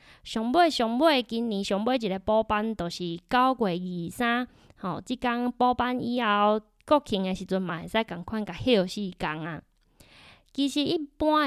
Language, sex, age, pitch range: Chinese, female, 20-39, 195-250 Hz